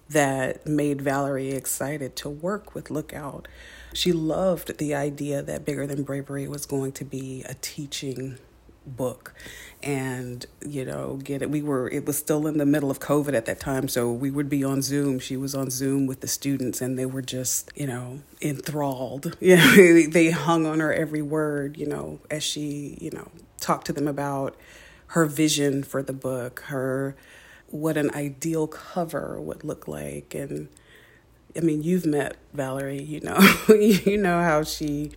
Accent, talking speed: American, 180 wpm